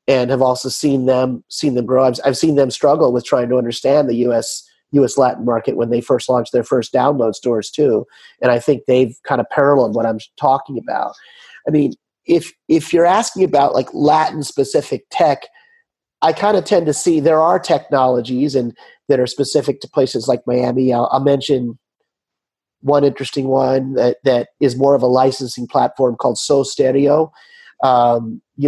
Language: English